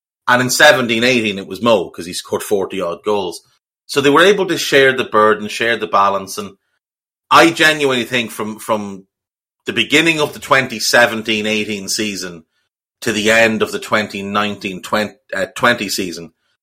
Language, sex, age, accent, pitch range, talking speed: English, male, 30-49, Irish, 100-125 Hz, 170 wpm